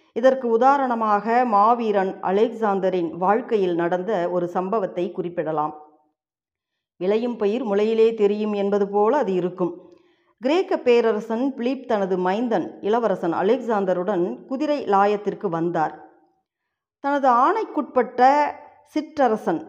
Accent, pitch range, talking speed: native, 185-260 Hz, 90 wpm